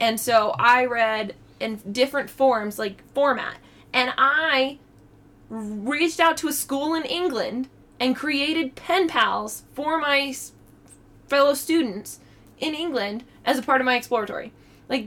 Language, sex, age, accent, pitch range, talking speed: English, female, 20-39, American, 220-305 Hz, 140 wpm